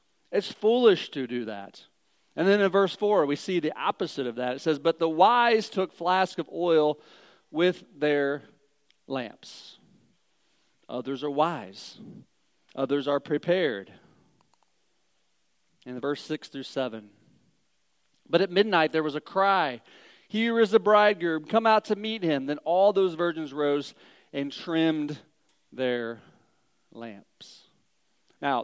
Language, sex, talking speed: English, male, 140 wpm